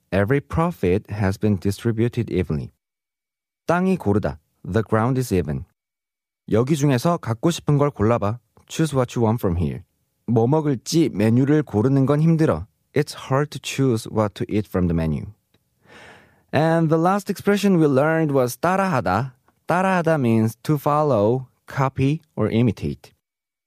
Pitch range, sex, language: 110-150 Hz, male, Korean